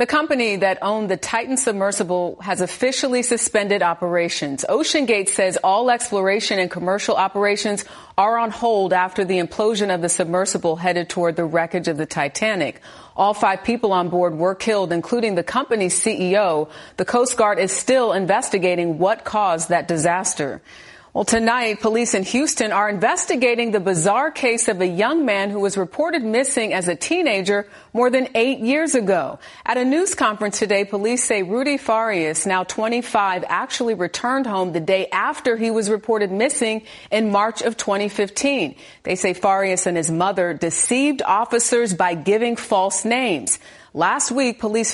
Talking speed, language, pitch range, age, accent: 160 wpm, English, 185-235 Hz, 40-59, American